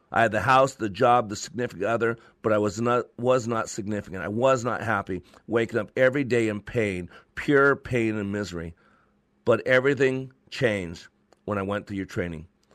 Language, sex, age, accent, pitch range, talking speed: English, male, 40-59, American, 100-130 Hz, 185 wpm